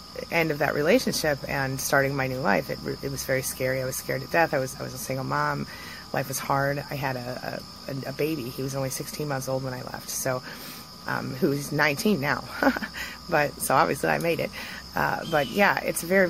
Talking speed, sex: 225 wpm, female